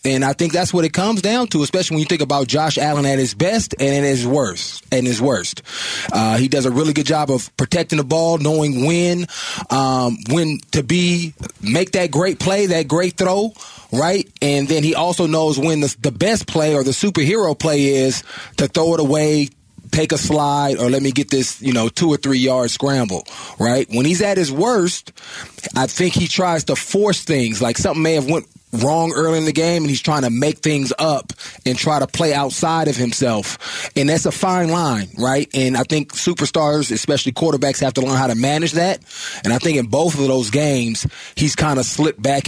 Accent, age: American, 20-39